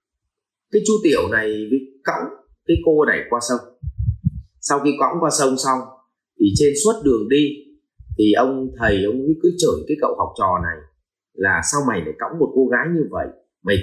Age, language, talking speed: 30-49, Vietnamese, 190 wpm